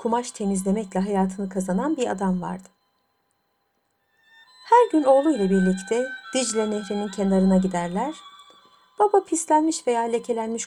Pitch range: 200-315 Hz